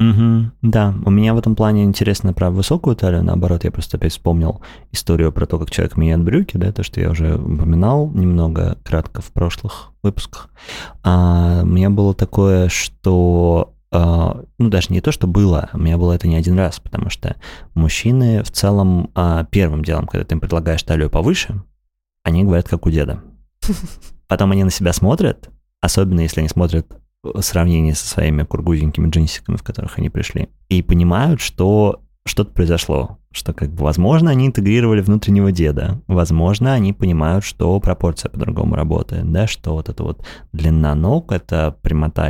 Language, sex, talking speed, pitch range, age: Russian, male, 170 wpm, 80-100 Hz, 30-49